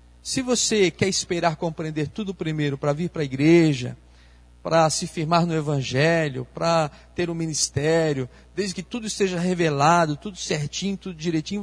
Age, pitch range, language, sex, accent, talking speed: 50-69, 145-195 Hz, Portuguese, male, Brazilian, 155 wpm